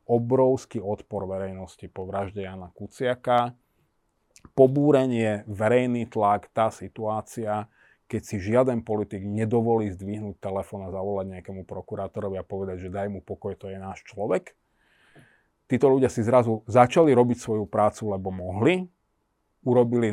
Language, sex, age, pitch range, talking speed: Slovak, male, 40-59, 100-125 Hz, 130 wpm